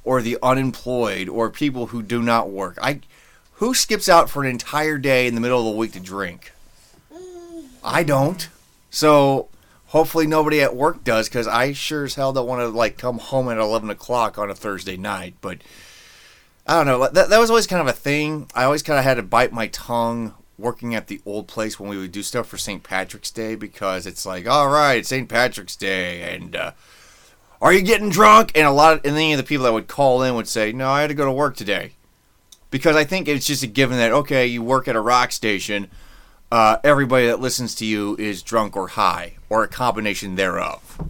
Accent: American